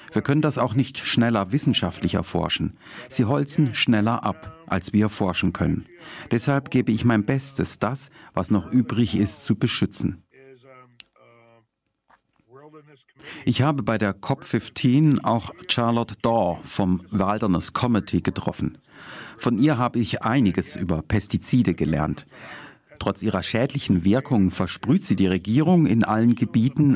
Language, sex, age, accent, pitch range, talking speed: German, male, 50-69, German, 100-135 Hz, 130 wpm